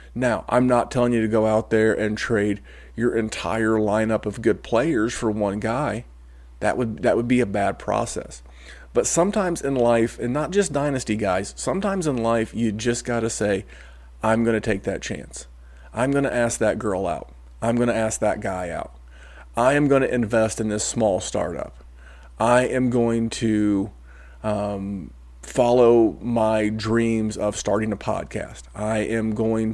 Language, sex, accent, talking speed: English, male, American, 180 wpm